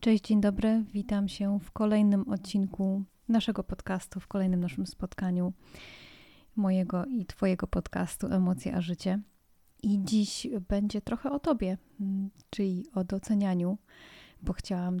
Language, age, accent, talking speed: Polish, 30-49, native, 130 wpm